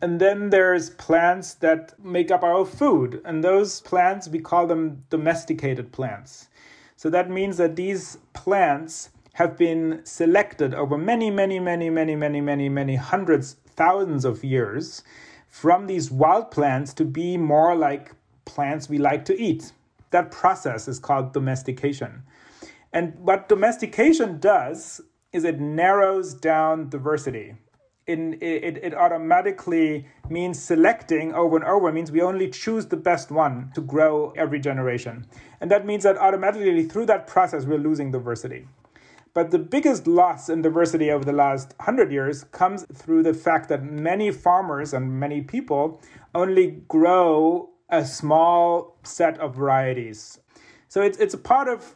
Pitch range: 145-190 Hz